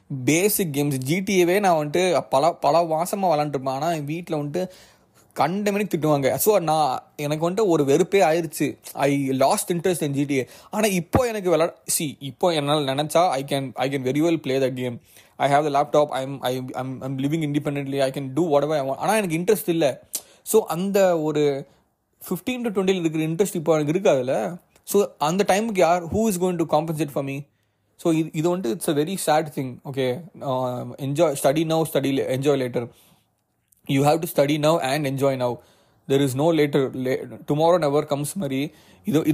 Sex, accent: male, native